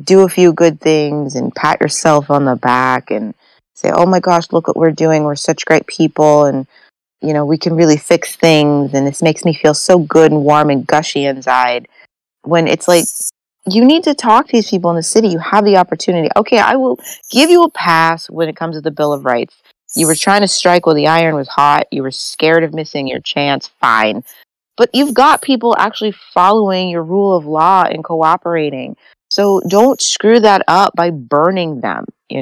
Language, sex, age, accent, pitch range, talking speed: English, female, 30-49, American, 150-190 Hz, 215 wpm